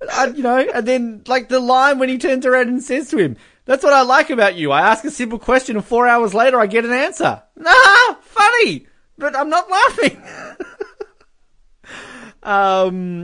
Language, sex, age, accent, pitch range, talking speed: English, male, 20-39, Australian, 140-200 Hz, 190 wpm